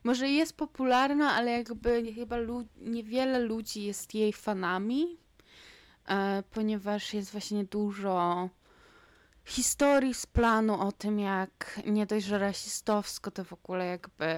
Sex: female